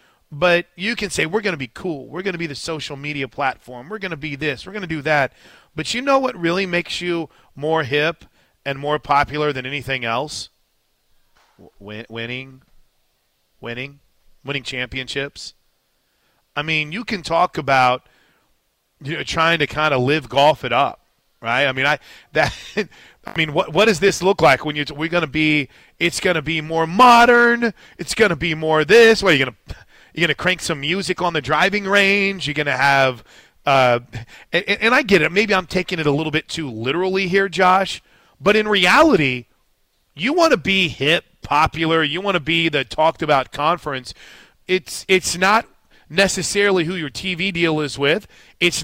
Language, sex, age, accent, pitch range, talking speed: English, male, 40-59, American, 140-185 Hz, 195 wpm